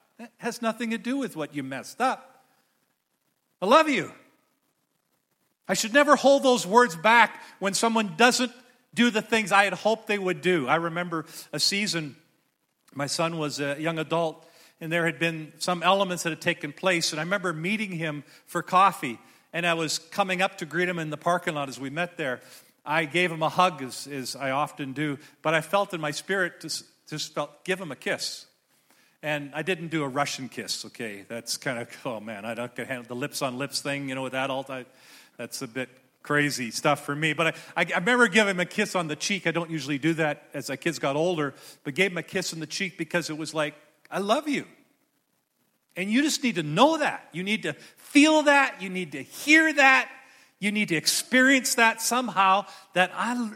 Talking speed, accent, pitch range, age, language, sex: 215 wpm, American, 150-215 Hz, 50-69, English, male